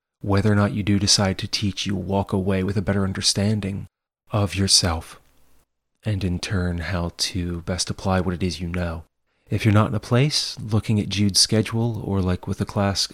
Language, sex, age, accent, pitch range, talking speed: English, male, 30-49, American, 95-110 Hz, 200 wpm